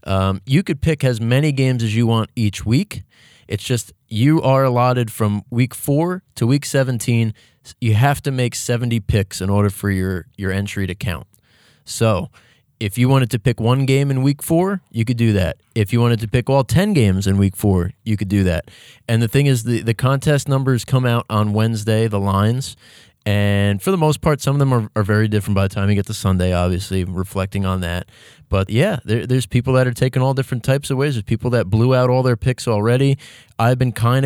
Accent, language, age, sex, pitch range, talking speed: American, English, 20-39, male, 105-135 Hz, 225 wpm